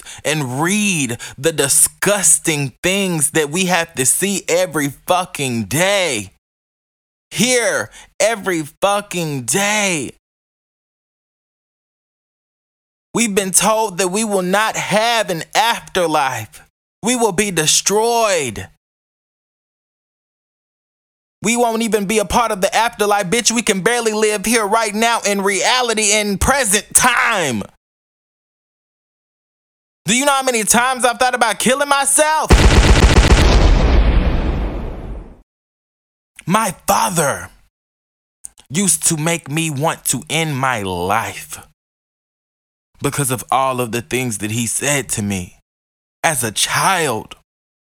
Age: 20-39